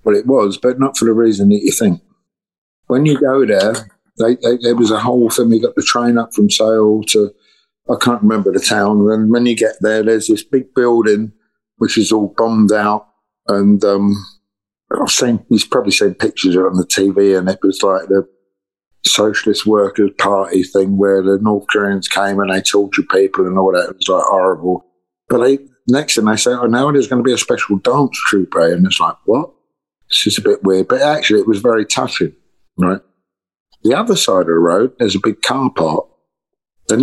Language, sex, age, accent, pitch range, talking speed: English, male, 50-69, British, 100-120 Hz, 205 wpm